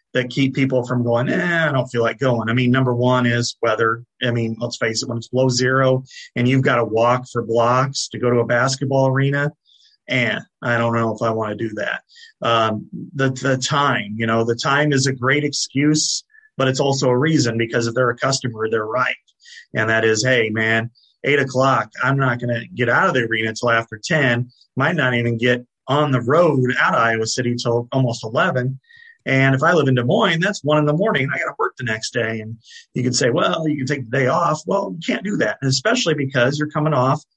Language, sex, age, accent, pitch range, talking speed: English, male, 30-49, American, 120-150 Hz, 235 wpm